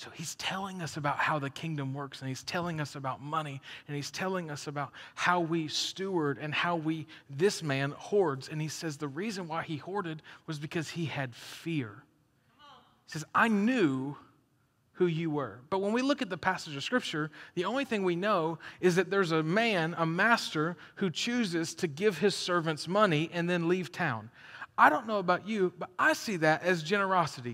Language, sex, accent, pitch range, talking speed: English, male, American, 160-225 Hz, 200 wpm